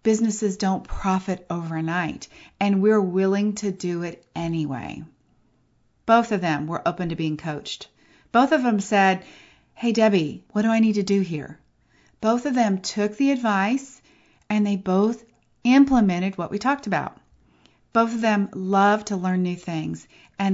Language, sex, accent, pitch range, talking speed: English, female, American, 175-220 Hz, 160 wpm